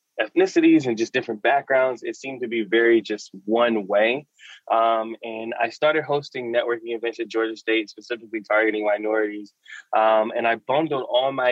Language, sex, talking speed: English, male, 165 wpm